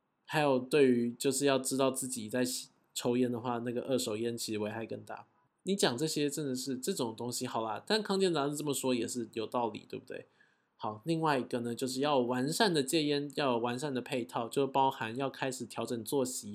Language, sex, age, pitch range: Chinese, male, 20-39, 120-145 Hz